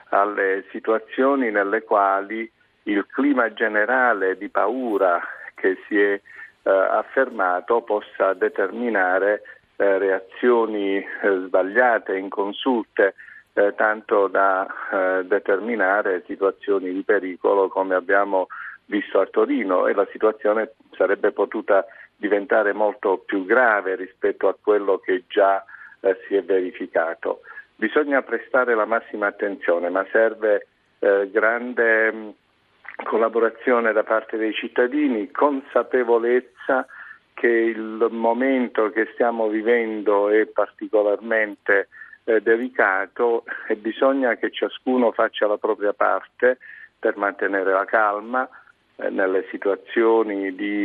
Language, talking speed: Italian, 110 wpm